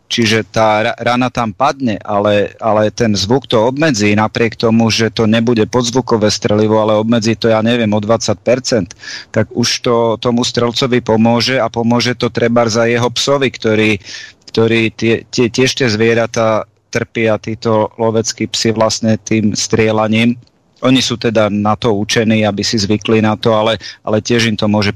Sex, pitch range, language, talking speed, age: male, 105-120 Hz, Slovak, 165 wpm, 30-49